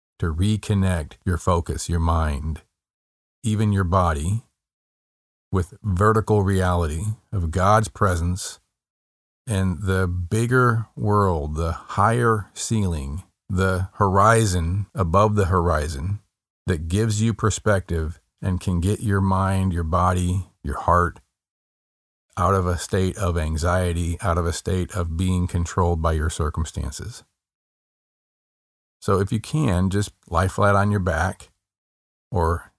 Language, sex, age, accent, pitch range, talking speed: English, male, 40-59, American, 85-100 Hz, 125 wpm